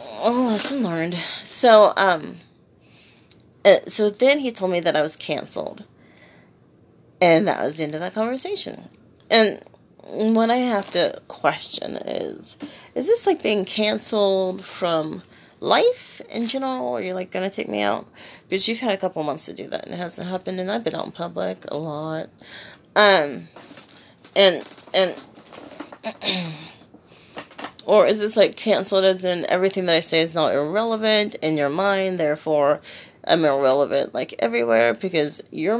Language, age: English, 30-49